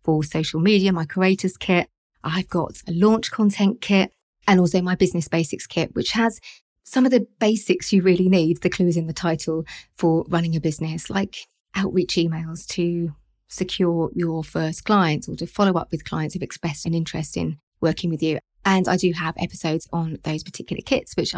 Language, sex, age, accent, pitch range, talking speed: English, female, 30-49, British, 165-195 Hz, 195 wpm